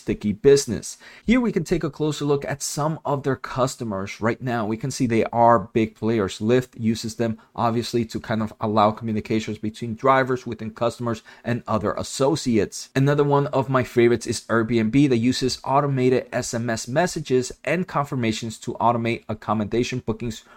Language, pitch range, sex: English, 110-130 Hz, male